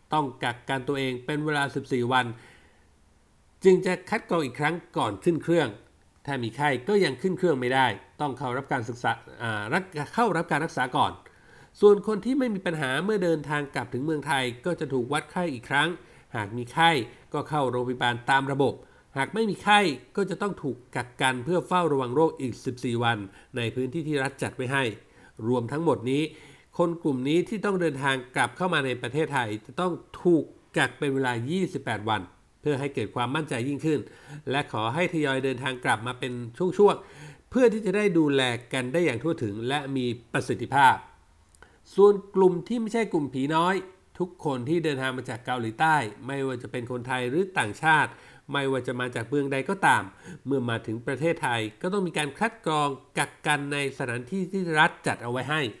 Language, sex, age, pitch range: Thai, male, 60-79, 125-170 Hz